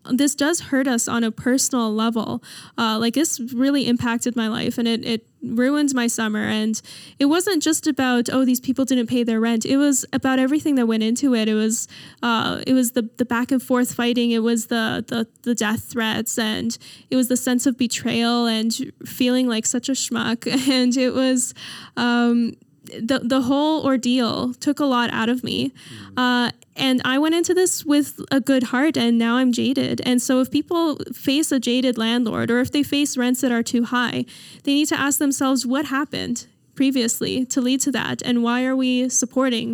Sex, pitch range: female, 230-265 Hz